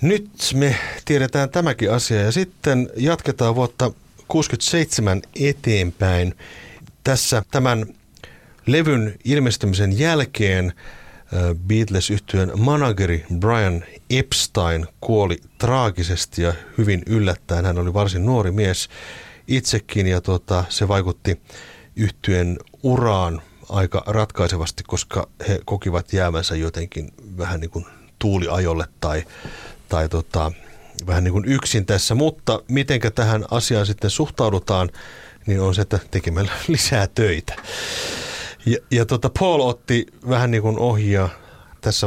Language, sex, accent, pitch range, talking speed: Finnish, male, native, 90-125 Hz, 110 wpm